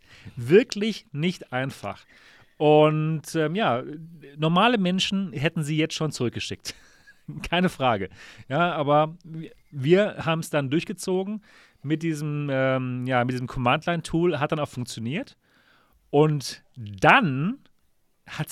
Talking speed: 115 wpm